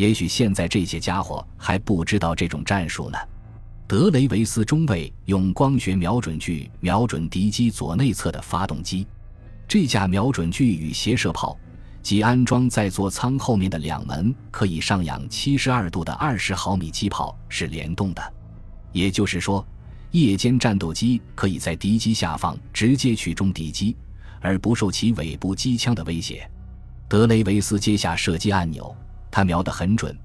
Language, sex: Chinese, male